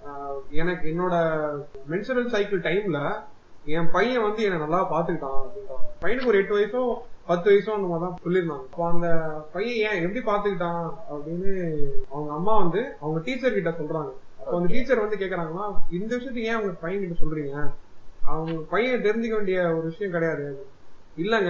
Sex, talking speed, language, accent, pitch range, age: male, 115 wpm, Tamil, native, 155-205 Hz, 30-49